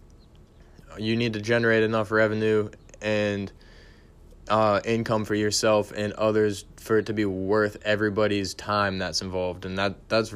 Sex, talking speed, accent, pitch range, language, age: male, 145 wpm, American, 95-110 Hz, English, 20-39